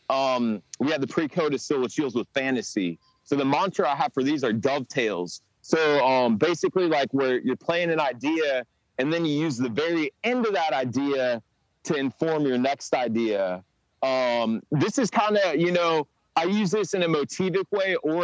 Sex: male